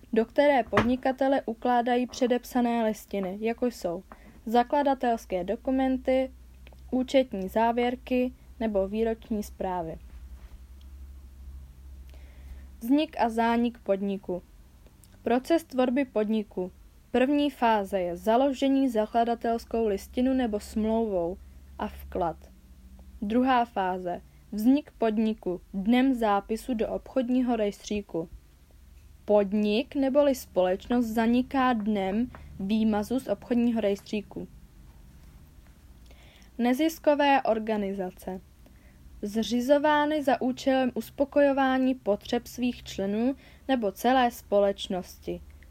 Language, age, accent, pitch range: Czech, 20-39, native, 195-250 Hz